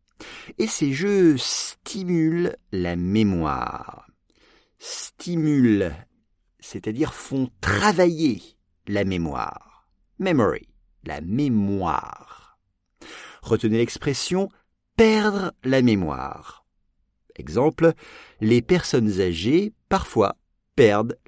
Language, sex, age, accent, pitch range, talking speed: English, male, 50-69, French, 105-170 Hz, 75 wpm